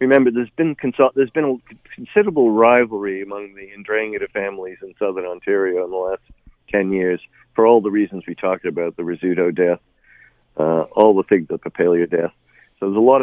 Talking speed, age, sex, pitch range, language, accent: 180 wpm, 50-69, male, 85-105 Hz, English, American